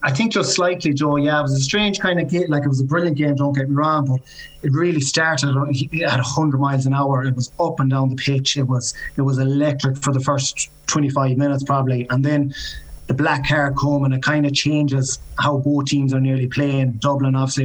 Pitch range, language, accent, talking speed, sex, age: 130-145 Hz, English, Irish, 235 wpm, male, 20-39